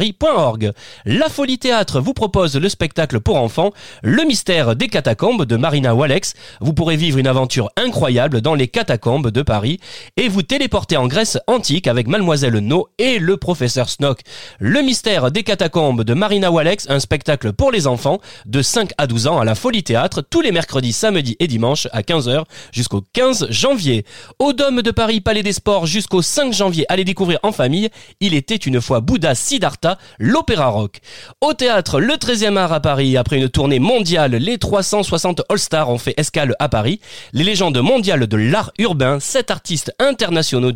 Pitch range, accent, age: 125-205 Hz, French, 30-49